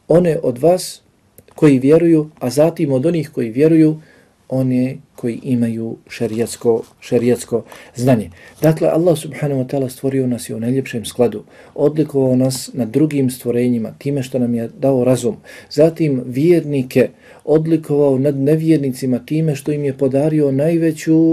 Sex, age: male, 40-59